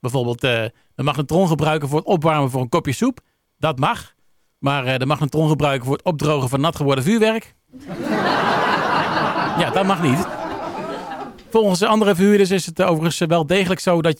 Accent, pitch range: Dutch, 140-180 Hz